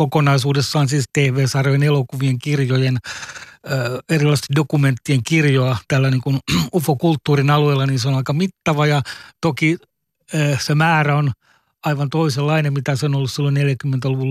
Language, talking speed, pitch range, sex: Finnish, 140 wpm, 140-155 Hz, male